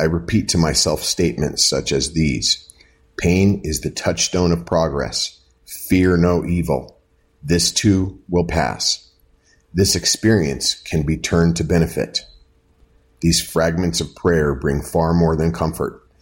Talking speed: 135 wpm